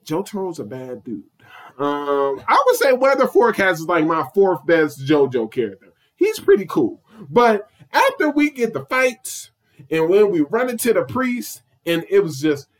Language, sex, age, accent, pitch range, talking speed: English, male, 20-39, American, 140-205 Hz, 175 wpm